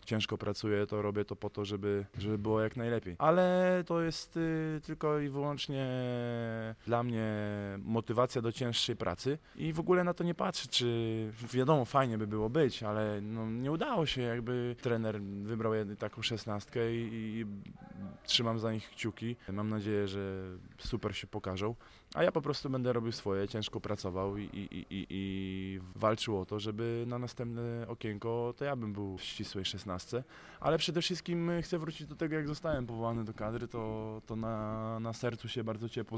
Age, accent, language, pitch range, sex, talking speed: 20-39, Polish, English, 100-120 Hz, male, 175 wpm